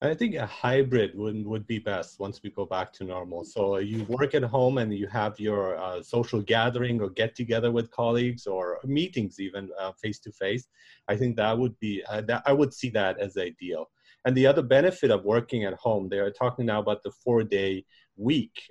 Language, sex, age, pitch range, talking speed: English, male, 40-59, 105-130 Hz, 205 wpm